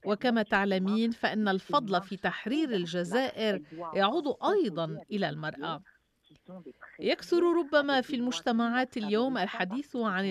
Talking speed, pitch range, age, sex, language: 105 wpm, 185-240 Hz, 40-59, female, Arabic